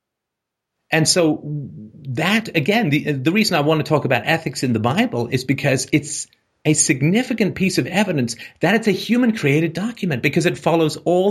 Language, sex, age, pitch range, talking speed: English, male, 40-59, 125-180 Hz, 175 wpm